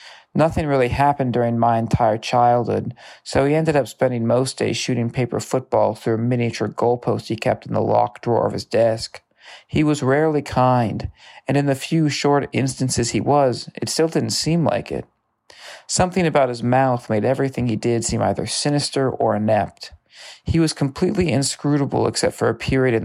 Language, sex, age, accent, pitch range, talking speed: English, male, 40-59, American, 115-140 Hz, 180 wpm